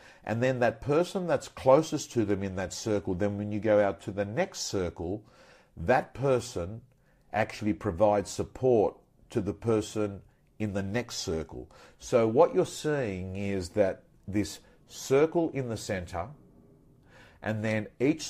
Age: 50-69